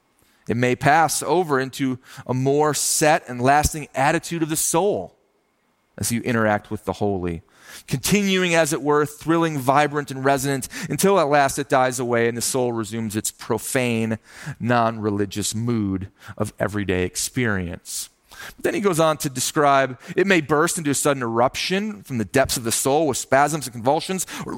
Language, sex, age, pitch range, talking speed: English, male, 30-49, 135-185 Hz, 170 wpm